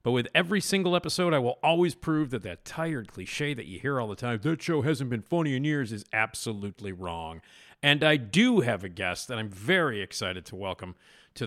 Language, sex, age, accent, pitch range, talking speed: English, male, 40-59, American, 110-160 Hz, 220 wpm